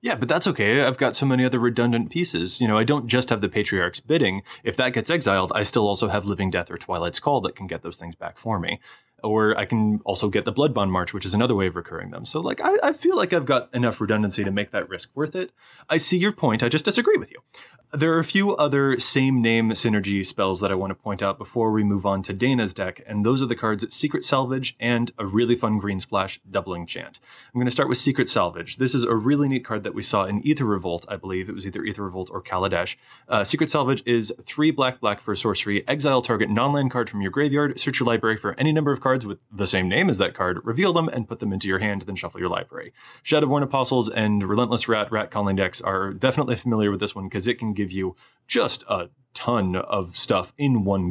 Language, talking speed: English, 250 wpm